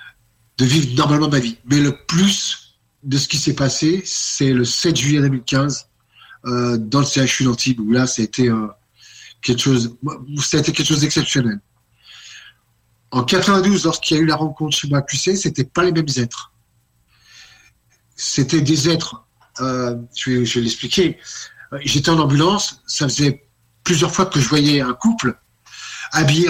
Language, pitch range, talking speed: French, 120-150 Hz, 155 wpm